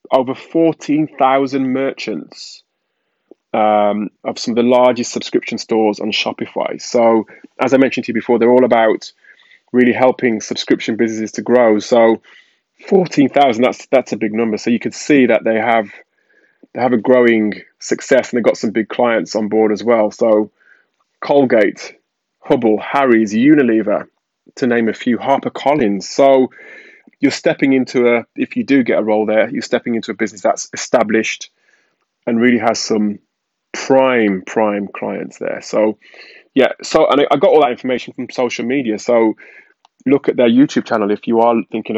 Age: 20-39